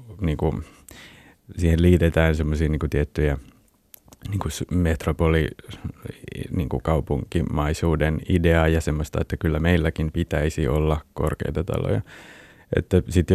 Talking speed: 95 wpm